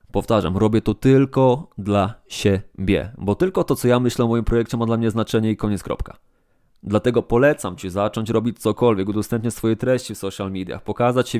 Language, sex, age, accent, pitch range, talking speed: Polish, male, 20-39, native, 100-120 Hz, 190 wpm